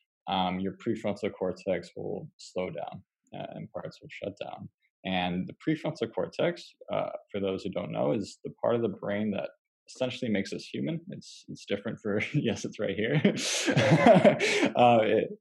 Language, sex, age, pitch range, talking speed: English, male, 20-39, 95-130 Hz, 170 wpm